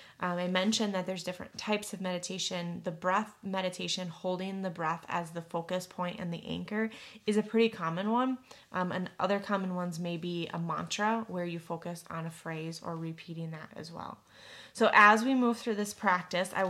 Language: English